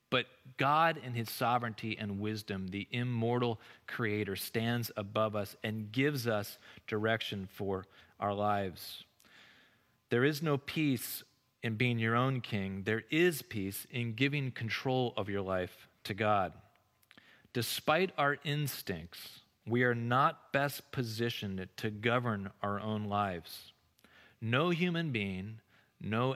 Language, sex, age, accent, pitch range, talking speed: English, male, 30-49, American, 105-130 Hz, 130 wpm